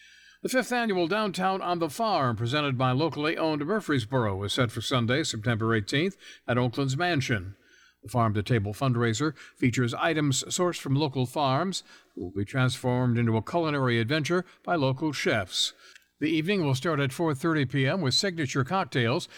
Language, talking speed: English, 165 wpm